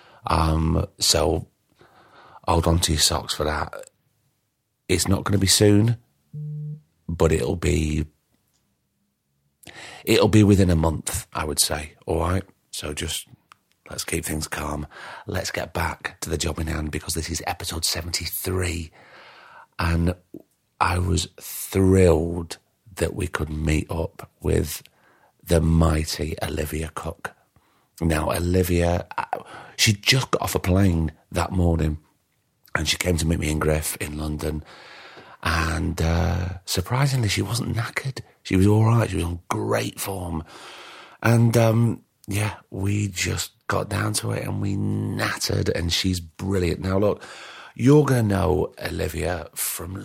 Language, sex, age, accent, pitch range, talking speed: English, male, 40-59, British, 80-100 Hz, 145 wpm